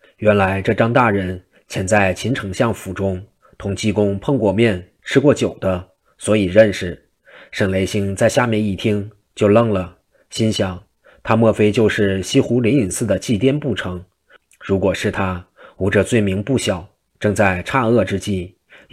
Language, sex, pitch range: Chinese, male, 95-110 Hz